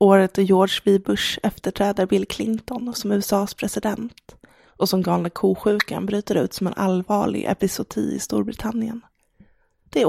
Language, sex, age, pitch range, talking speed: English, female, 20-39, 195-220 Hz, 150 wpm